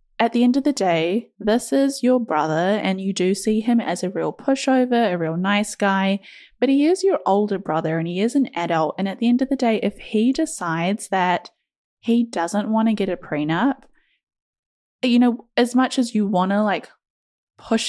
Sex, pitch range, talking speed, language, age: female, 175-235 Hz, 210 wpm, English, 10-29